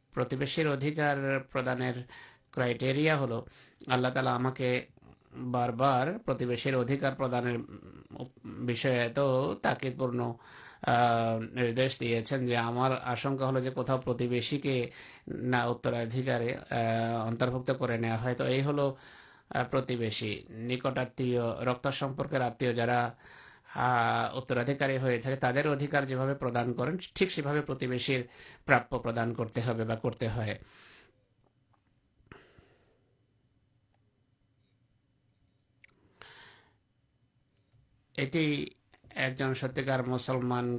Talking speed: 35 wpm